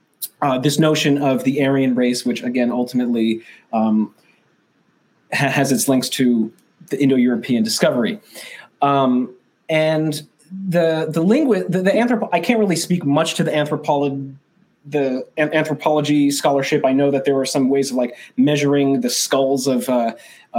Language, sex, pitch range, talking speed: English, male, 125-155 Hz, 155 wpm